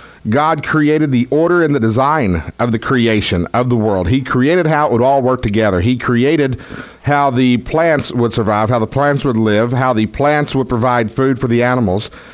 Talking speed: 205 wpm